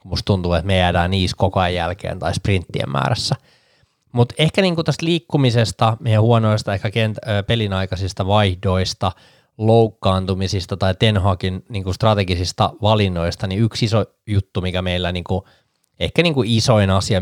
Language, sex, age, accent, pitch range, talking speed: Finnish, male, 20-39, native, 95-110 Hz, 130 wpm